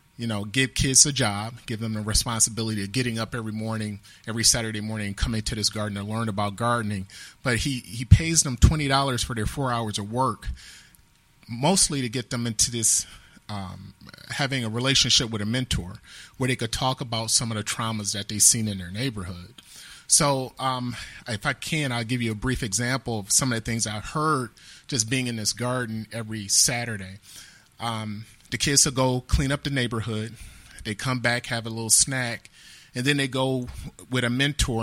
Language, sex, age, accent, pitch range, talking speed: English, male, 30-49, American, 110-130 Hz, 200 wpm